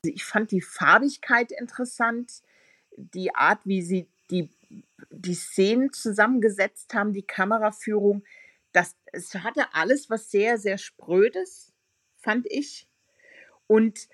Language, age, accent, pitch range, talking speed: German, 50-69, German, 170-215 Hz, 110 wpm